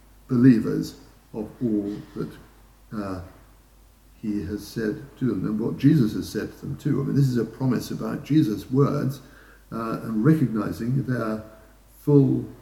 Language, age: English, 60-79